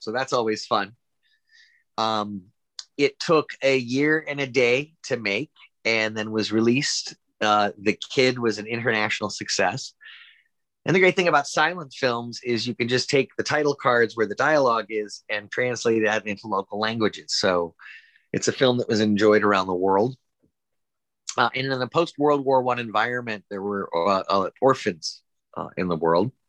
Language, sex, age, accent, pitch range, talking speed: English, male, 30-49, American, 100-125 Hz, 170 wpm